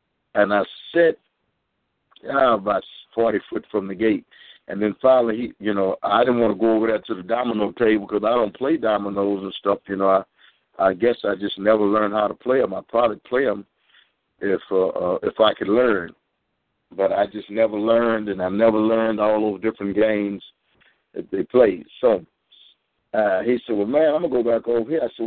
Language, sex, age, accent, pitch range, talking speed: English, male, 60-79, American, 105-130 Hz, 215 wpm